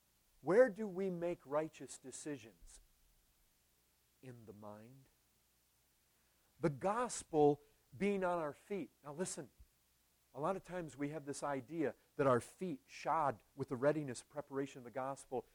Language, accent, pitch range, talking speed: English, American, 120-160 Hz, 140 wpm